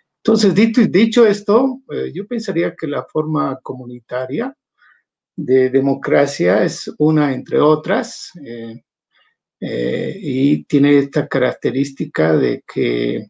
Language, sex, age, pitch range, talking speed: Spanish, male, 50-69, 125-155 Hz, 115 wpm